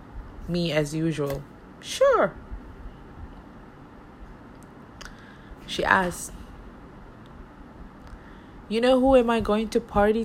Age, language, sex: 20-39, Malay, female